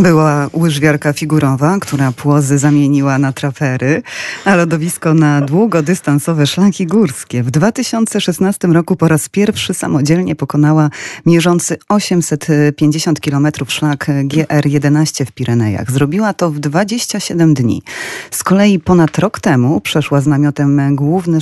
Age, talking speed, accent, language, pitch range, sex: 30-49, 120 wpm, native, Polish, 140-170 Hz, female